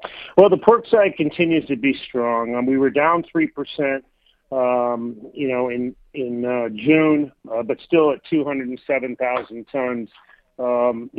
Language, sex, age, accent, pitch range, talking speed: English, male, 40-59, American, 120-140 Hz, 145 wpm